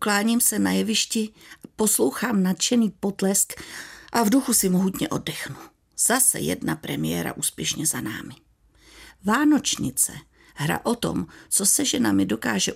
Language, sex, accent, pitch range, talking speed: Czech, female, native, 165-240 Hz, 125 wpm